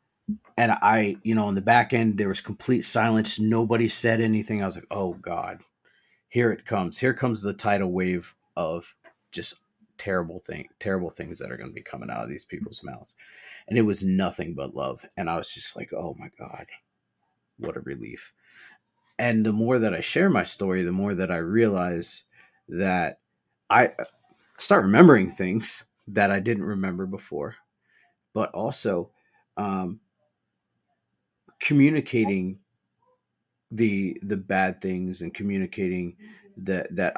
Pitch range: 95-110 Hz